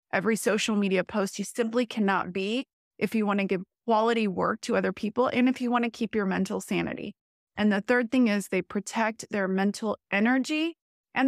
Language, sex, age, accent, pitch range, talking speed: English, female, 20-39, American, 200-240 Hz, 200 wpm